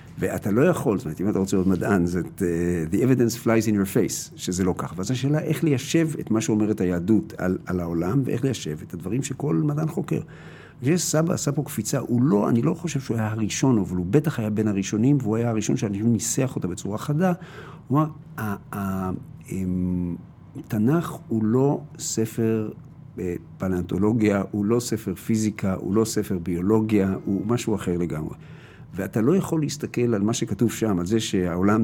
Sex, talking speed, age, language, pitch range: male, 175 wpm, 50-69, Hebrew, 95-135 Hz